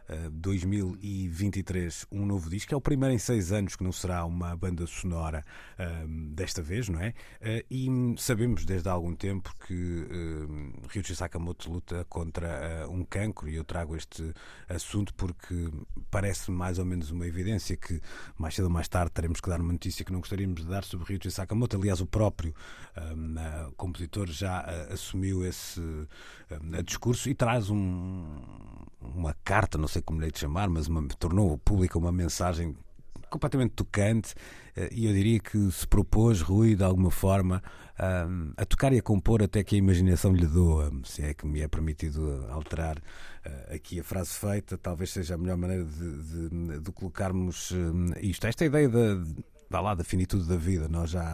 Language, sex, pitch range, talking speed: Portuguese, male, 85-100 Hz, 165 wpm